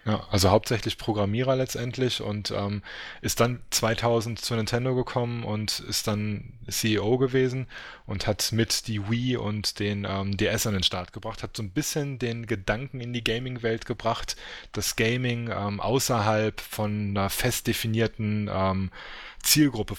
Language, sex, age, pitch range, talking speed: English, male, 20-39, 100-115 Hz, 155 wpm